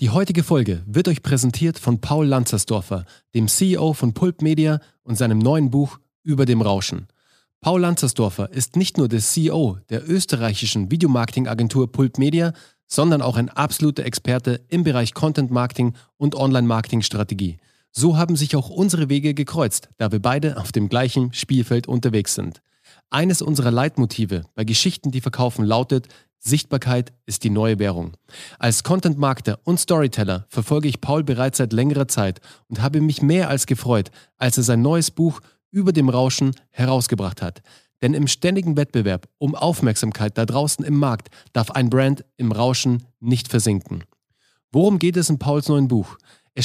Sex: male